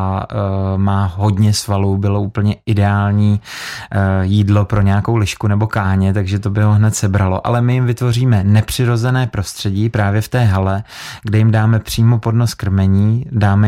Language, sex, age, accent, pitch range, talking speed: Czech, male, 20-39, native, 100-110 Hz, 160 wpm